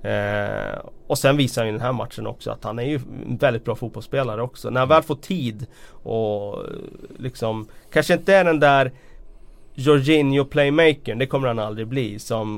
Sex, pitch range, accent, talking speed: male, 115-135 Hz, native, 185 wpm